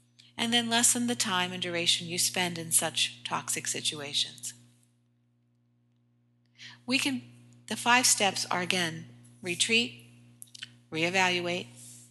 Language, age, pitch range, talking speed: English, 50-69, 120-185 Hz, 110 wpm